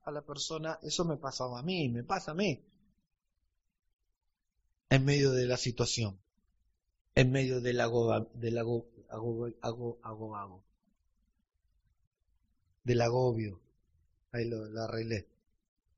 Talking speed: 110 wpm